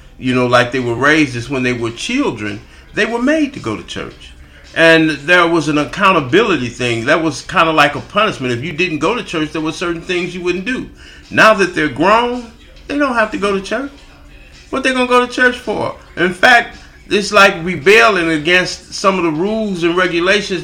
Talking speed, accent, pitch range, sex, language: 215 wpm, American, 145-195 Hz, male, English